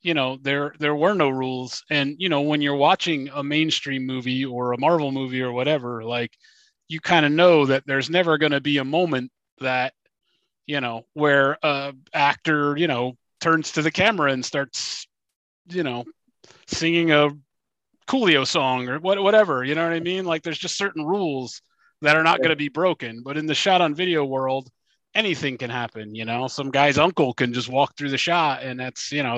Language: English